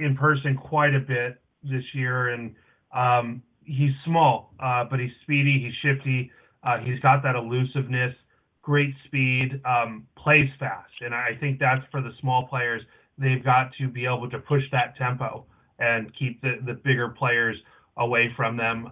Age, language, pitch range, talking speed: 30-49, English, 120-135 Hz, 170 wpm